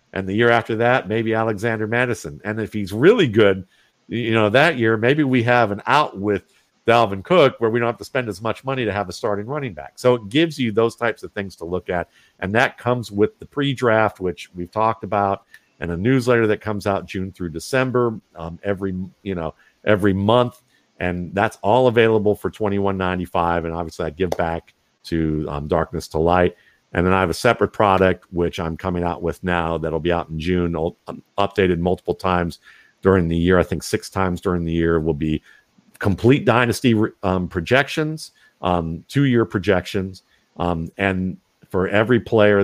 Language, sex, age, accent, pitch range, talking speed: English, male, 50-69, American, 85-110 Hz, 200 wpm